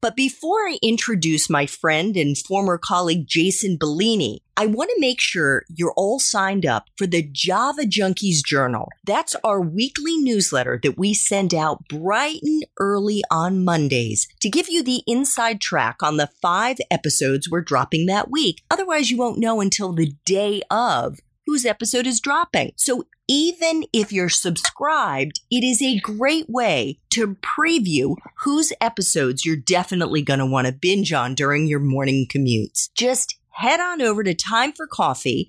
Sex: female